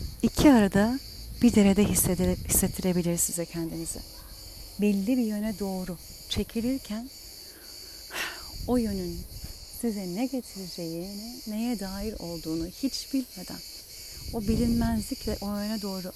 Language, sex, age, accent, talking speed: Turkish, female, 40-59, native, 105 wpm